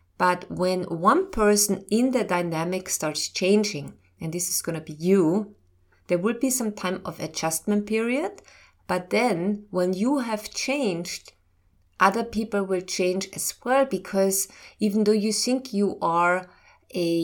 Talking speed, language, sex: 155 wpm, English, female